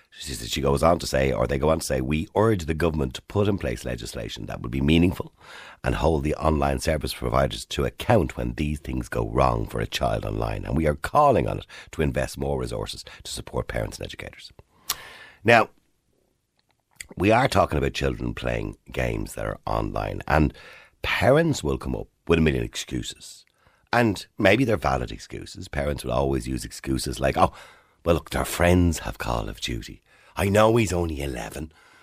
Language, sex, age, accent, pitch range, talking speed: English, male, 60-79, Irish, 70-95 Hz, 190 wpm